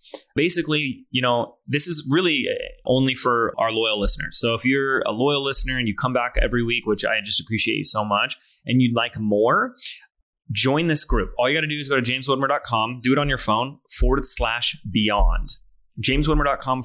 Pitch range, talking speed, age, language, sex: 115-140 Hz, 195 wpm, 30-49, English, male